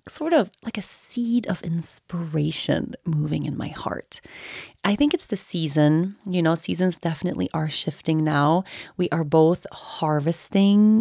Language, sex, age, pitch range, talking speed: English, female, 30-49, 160-215 Hz, 145 wpm